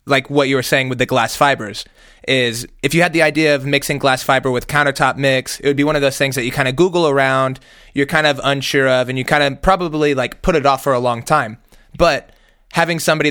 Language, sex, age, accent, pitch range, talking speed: English, male, 20-39, American, 130-150 Hz, 250 wpm